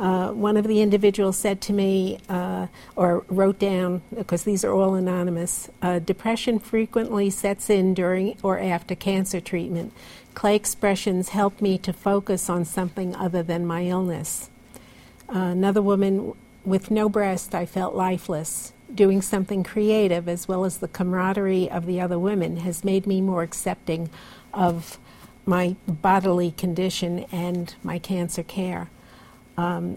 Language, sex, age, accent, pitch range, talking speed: English, female, 60-79, American, 180-205 Hz, 150 wpm